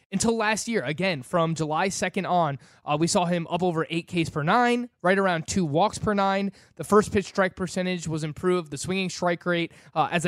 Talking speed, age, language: 215 wpm, 20-39, English